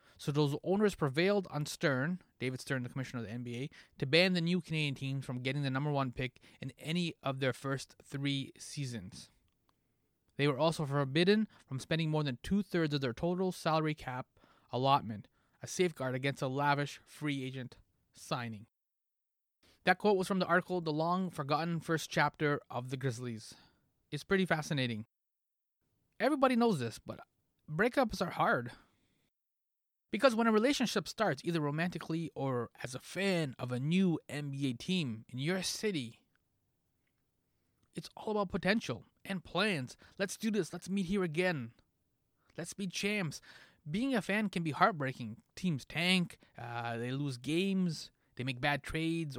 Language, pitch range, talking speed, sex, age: English, 130-180 Hz, 160 wpm, male, 20-39